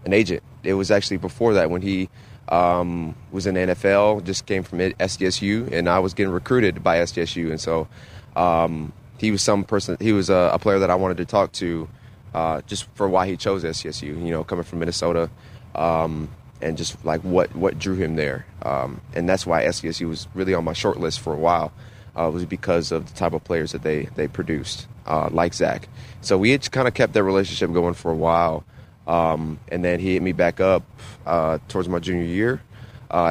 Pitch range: 85-105 Hz